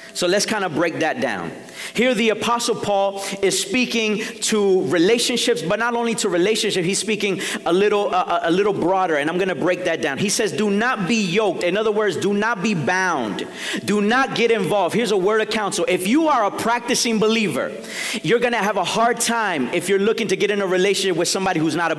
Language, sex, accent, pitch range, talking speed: English, male, American, 185-230 Hz, 220 wpm